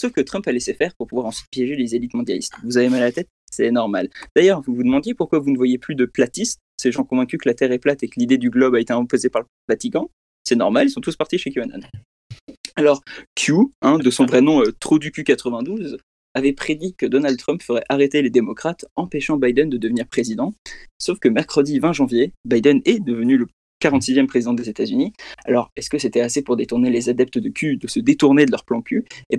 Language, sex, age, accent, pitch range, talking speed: French, male, 20-39, French, 125-185 Hz, 240 wpm